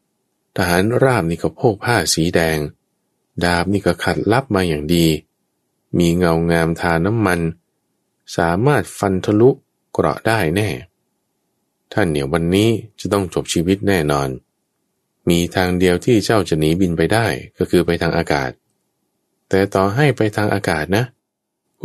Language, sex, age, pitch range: Thai, male, 20-39, 75-100 Hz